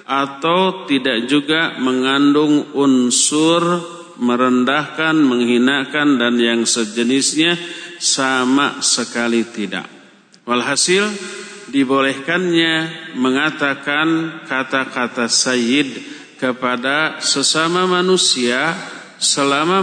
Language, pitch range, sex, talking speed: Indonesian, 130-170 Hz, male, 65 wpm